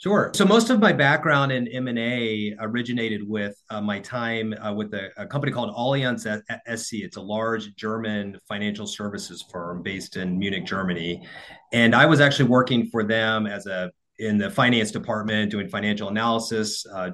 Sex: male